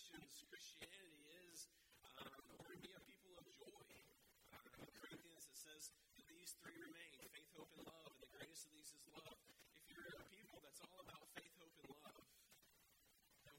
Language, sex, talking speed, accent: English, male, 170 wpm, American